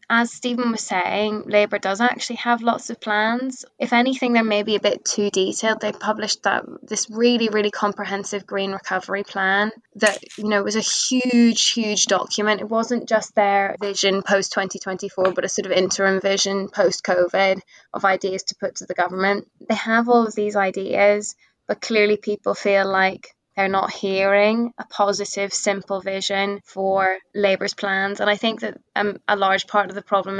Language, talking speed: English, 180 wpm